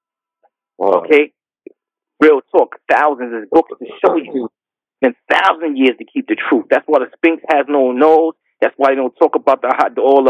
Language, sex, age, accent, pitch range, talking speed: English, male, 30-49, American, 140-200 Hz, 185 wpm